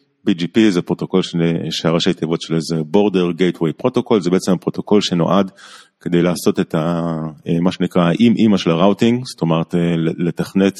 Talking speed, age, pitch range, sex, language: 155 wpm, 30-49, 90-135 Hz, male, Hebrew